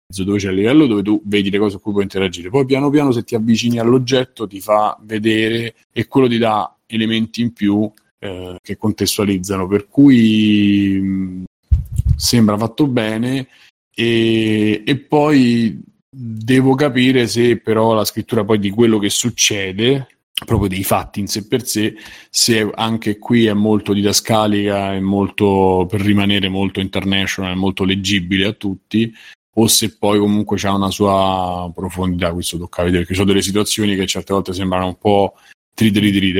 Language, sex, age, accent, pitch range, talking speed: Italian, male, 30-49, native, 95-110 Hz, 170 wpm